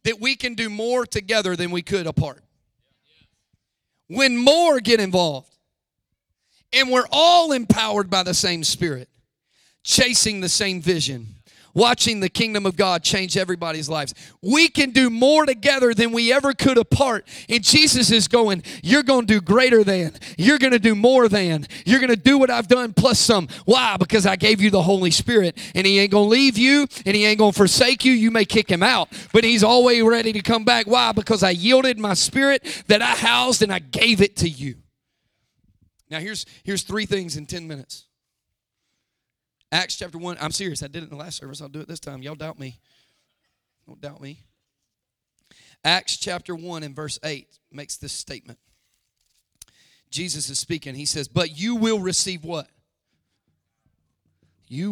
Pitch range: 140-225 Hz